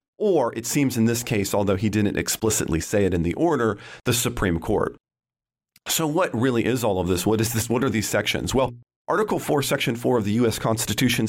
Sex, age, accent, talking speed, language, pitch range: male, 40-59, American, 220 wpm, English, 95-125 Hz